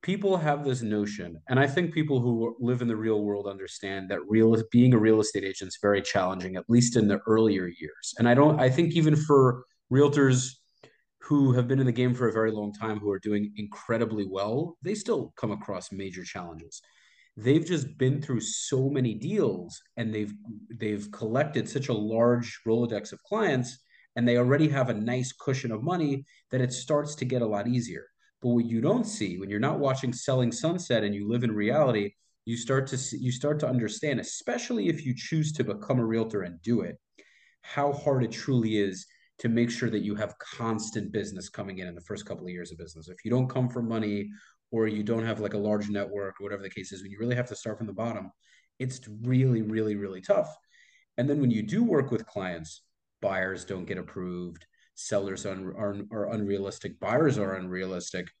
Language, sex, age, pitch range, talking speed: English, male, 30-49, 105-130 Hz, 210 wpm